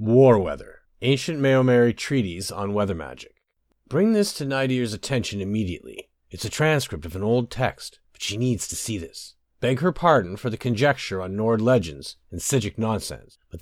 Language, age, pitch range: English, 40-59, 105-140 Hz